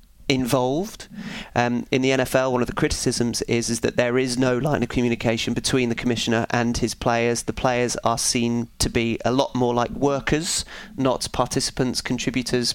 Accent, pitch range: British, 120-135 Hz